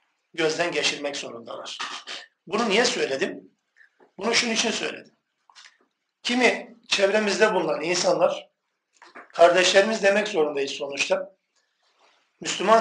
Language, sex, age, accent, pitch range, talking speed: Turkish, male, 50-69, native, 160-205 Hz, 90 wpm